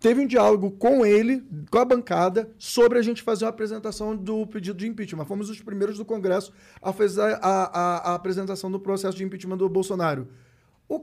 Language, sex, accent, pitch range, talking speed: Portuguese, male, Brazilian, 180-240 Hz, 195 wpm